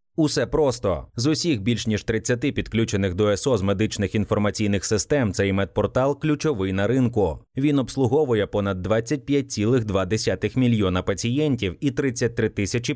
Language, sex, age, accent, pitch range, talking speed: Ukrainian, male, 20-39, native, 105-135 Hz, 125 wpm